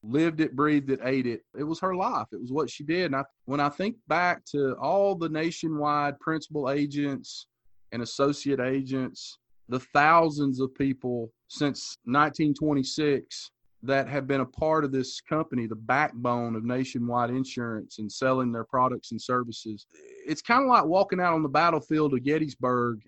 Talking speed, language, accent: 170 wpm, English, American